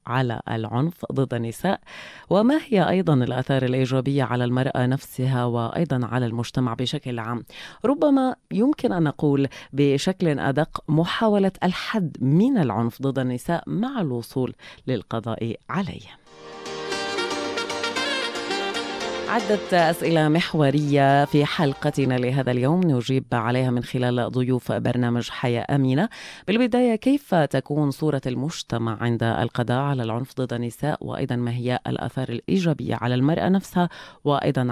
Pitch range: 125-175 Hz